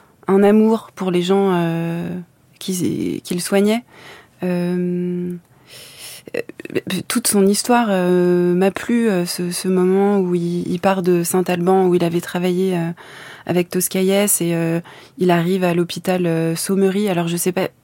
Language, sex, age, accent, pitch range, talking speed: French, female, 20-39, French, 165-190 Hz, 155 wpm